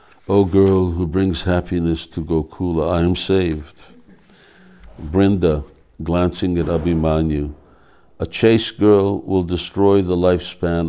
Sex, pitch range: male, 80-90 Hz